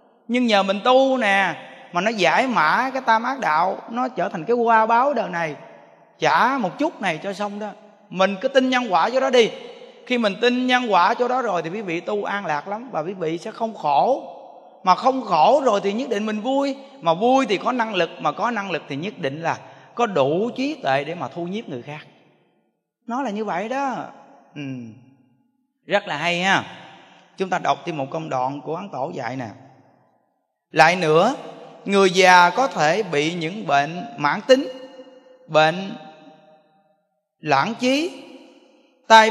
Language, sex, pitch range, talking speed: Vietnamese, male, 155-235 Hz, 190 wpm